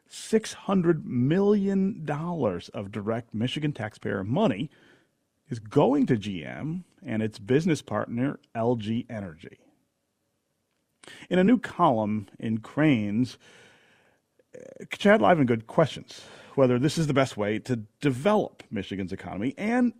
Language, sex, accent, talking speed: English, male, American, 110 wpm